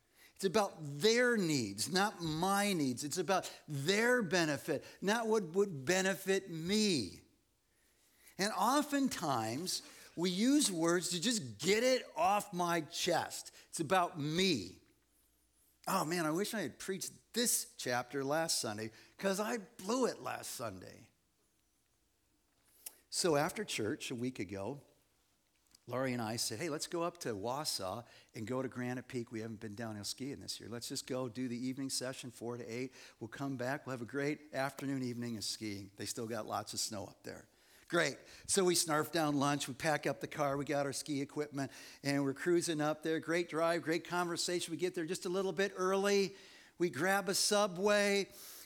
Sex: male